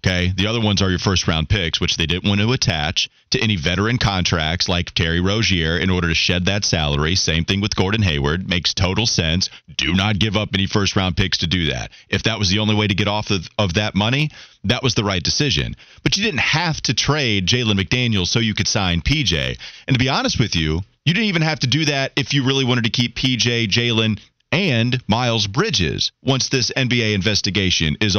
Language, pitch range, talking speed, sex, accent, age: English, 95-130 Hz, 225 wpm, male, American, 30-49